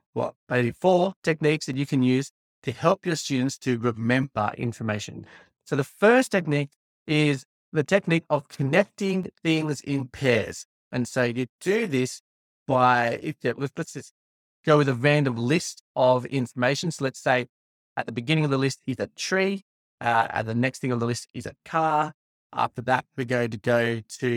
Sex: male